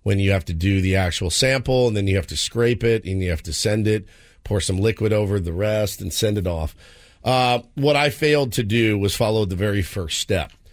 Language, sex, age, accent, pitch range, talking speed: English, male, 50-69, American, 95-120 Hz, 240 wpm